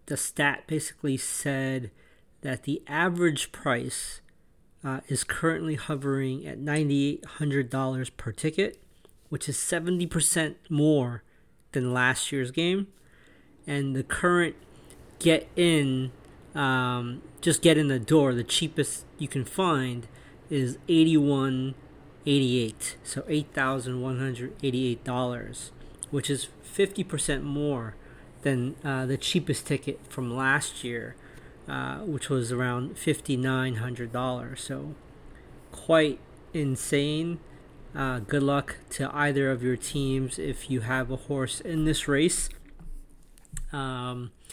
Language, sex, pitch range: English, male, 130-150 Hz